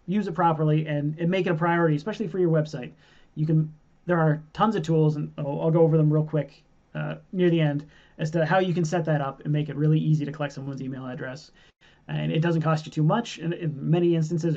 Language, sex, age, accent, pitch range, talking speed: English, male, 30-49, American, 145-170 Hz, 245 wpm